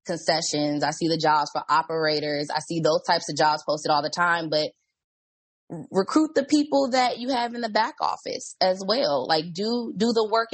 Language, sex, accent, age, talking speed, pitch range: English, female, American, 20-39, 200 wpm, 165-230 Hz